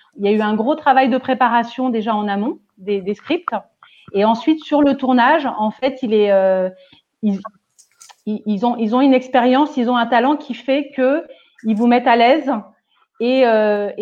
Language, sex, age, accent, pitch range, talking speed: French, female, 30-49, French, 205-265 Hz, 195 wpm